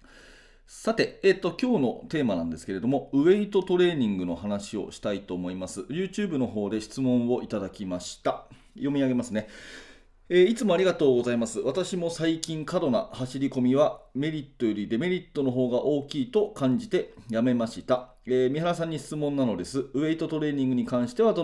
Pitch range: 115-170 Hz